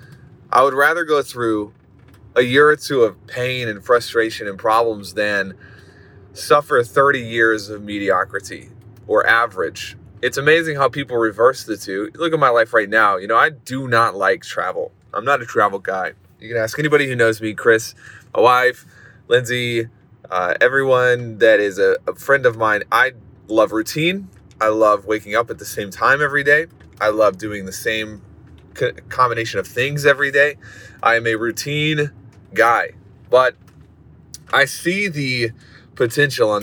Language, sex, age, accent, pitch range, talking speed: English, male, 20-39, American, 110-145 Hz, 165 wpm